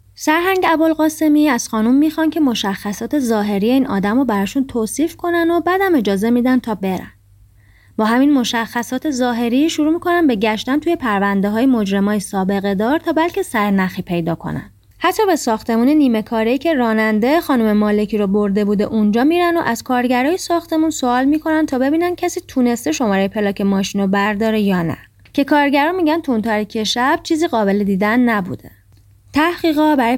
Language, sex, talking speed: Persian, female, 155 wpm